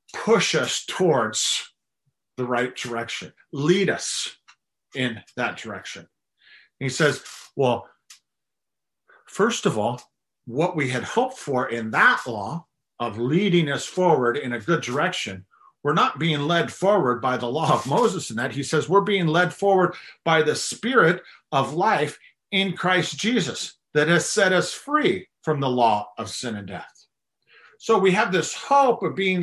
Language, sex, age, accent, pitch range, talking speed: English, male, 40-59, American, 140-190 Hz, 160 wpm